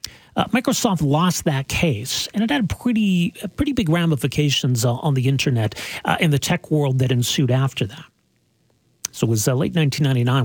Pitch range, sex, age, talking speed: 130-180 Hz, male, 40-59, 190 wpm